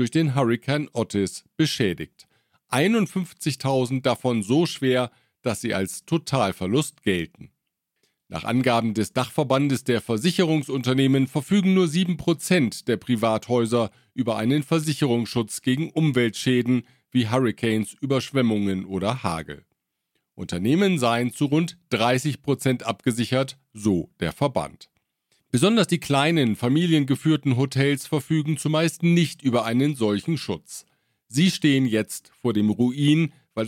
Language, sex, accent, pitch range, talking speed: German, male, German, 115-150 Hz, 115 wpm